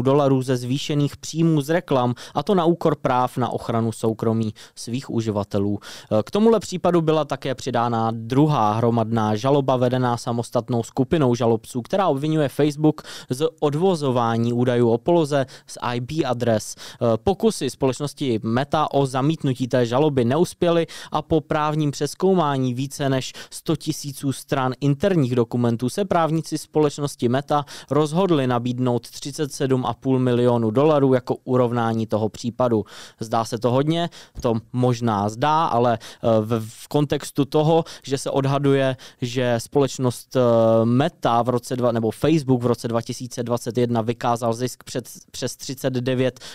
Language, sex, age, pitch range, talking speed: Czech, male, 20-39, 120-150 Hz, 135 wpm